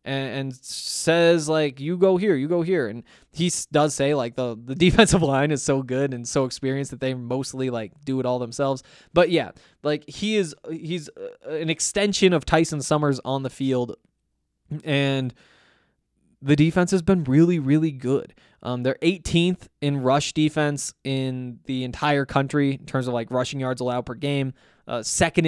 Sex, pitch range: male, 125-155 Hz